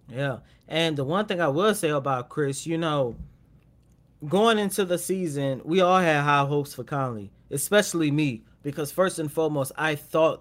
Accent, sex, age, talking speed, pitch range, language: American, male, 20-39, 180 wpm, 140-180 Hz, English